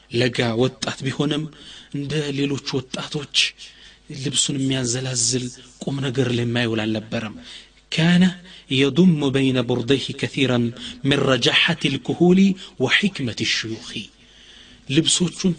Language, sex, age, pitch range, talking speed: Amharic, male, 30-49, 120-165 Hz, 90 wpm